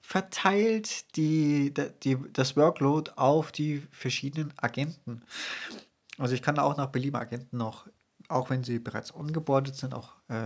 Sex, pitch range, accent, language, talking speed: male, 125-155 Hz, German, German, 140 wpm